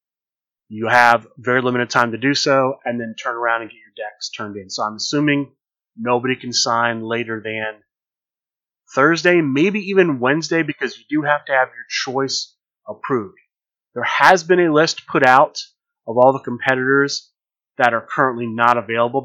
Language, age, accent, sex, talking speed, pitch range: English, 30-49, American, male, 170 wpm, 115-140 Hz